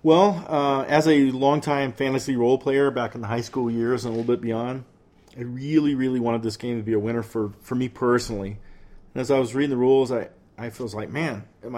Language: English